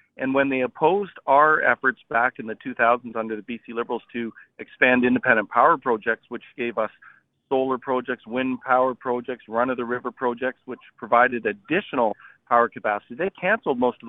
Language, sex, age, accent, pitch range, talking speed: English, male, 40-59, American, 115-130 Hz, 160 wpm